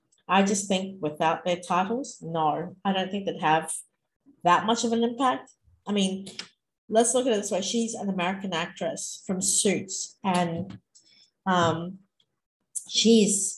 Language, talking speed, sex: English, 150 wpm, female